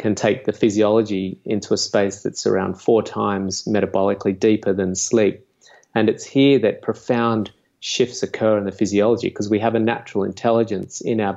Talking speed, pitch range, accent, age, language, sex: 175 wpm, 100-115 Hz, Australian, 30-49, English, male